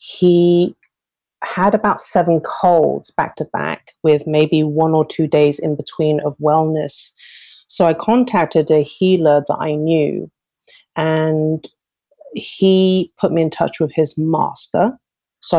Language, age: English, 30-49